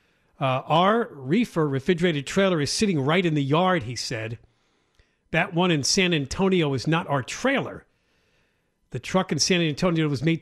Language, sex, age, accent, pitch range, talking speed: English, male, 50-69, American, 135-185 Hz, 165 wpm